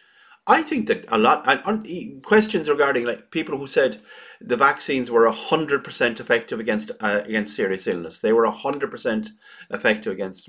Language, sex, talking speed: English, male, 175 wpm